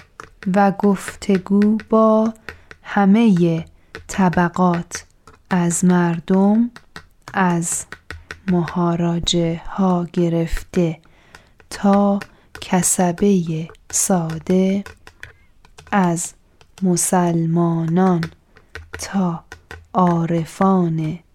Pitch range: 170-200 Hz